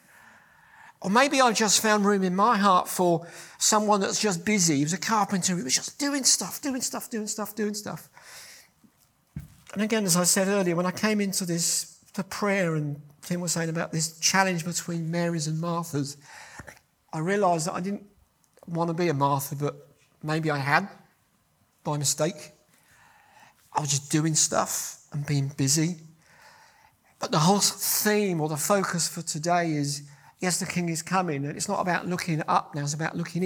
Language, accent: English, British